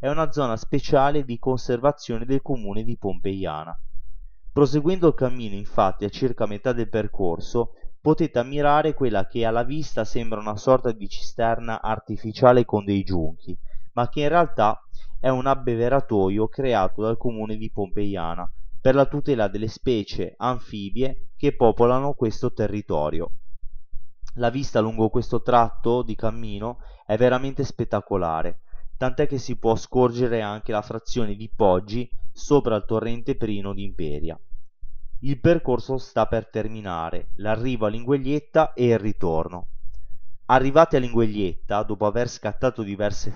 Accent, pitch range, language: native, 105-130 Hz, Italian